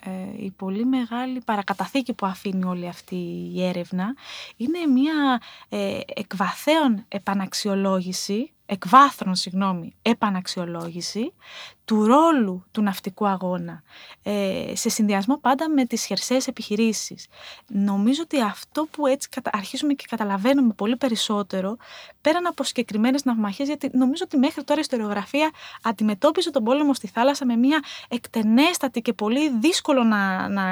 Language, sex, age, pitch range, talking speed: Greek, female, 20-39, 200-275 Hz, 125 wpm